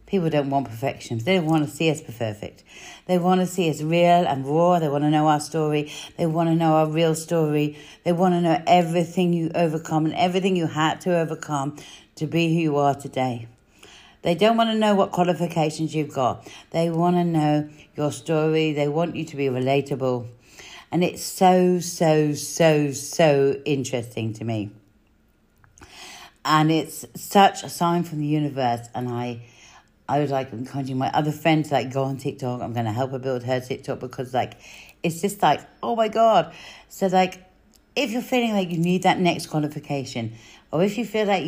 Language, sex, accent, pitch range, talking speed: English, female, British, 140-180 Hz, 195 wpm